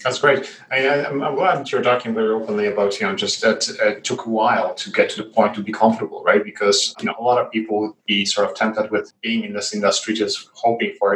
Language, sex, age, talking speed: English, male, 30-49, 265 wpm